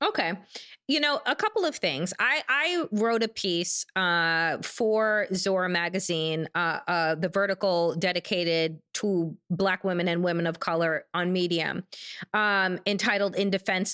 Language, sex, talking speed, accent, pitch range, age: English, female, 145 wpm, American, 185-260 Hz, 20-39